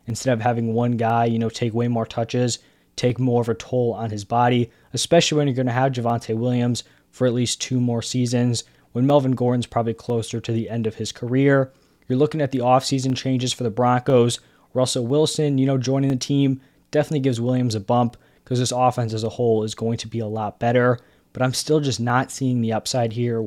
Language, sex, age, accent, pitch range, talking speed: English, male, 20-39, American, 115-135 Hz, 220 wpm